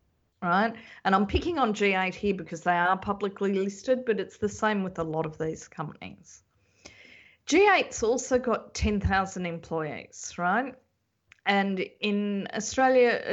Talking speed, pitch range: 145 wpm, 175-225 Hz